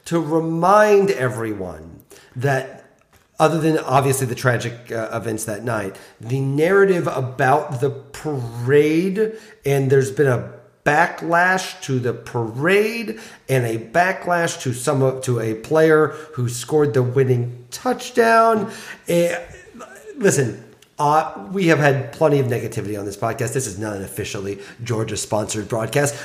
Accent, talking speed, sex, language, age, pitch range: American, 135 wpm, male, English, 40-59, 115-160 Hz